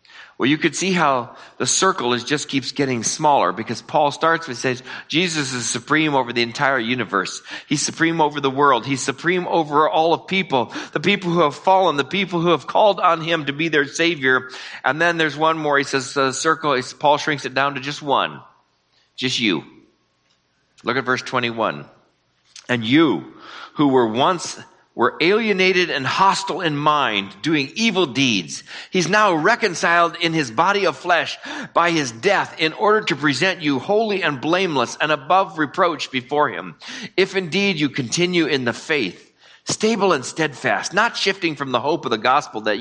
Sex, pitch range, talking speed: male, 130-175 Hz, 185 wpm